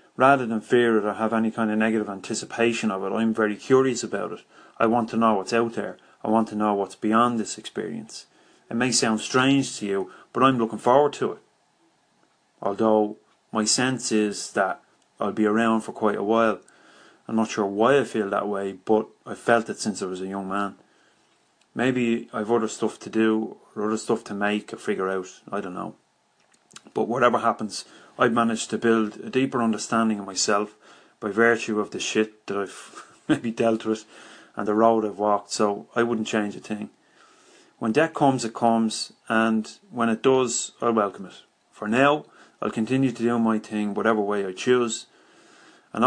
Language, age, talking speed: English, 30-49, 195 wpm